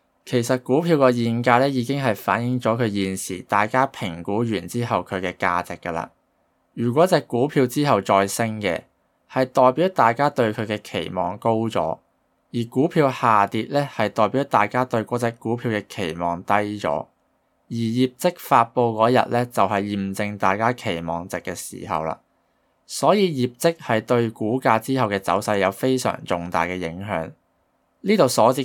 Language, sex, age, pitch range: Chinese, male, 20-39, 95-125 Hz